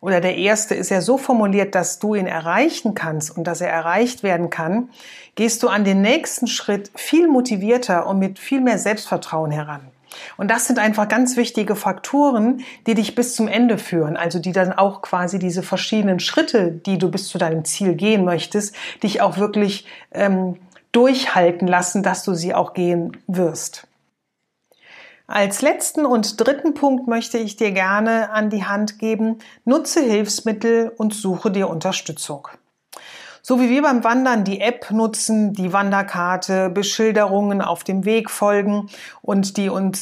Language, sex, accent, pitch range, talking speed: German, female, German, 185-230 Hz, 165 wpm